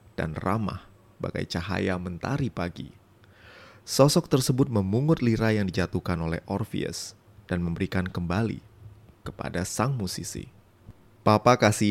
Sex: male